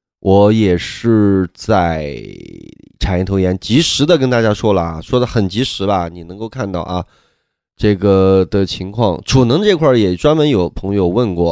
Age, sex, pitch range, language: 20-39, male, 90-135 Hz, Chinese